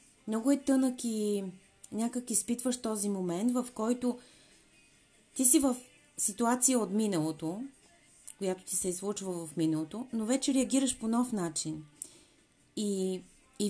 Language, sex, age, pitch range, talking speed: Bulgarian, female, 30-49, 180-240 Hz, 130 wpm